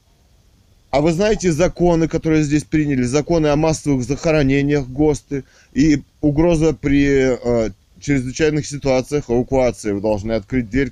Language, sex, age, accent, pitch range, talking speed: Russian, male, 20-39, native, 115-150 Hz, 125 wpm